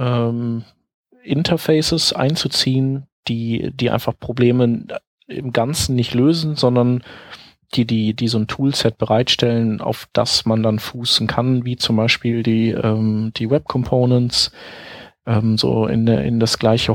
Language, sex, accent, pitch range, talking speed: German, male, German, 115-130 Hz, 140 wpm